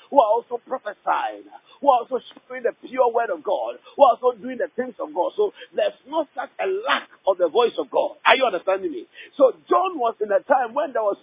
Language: English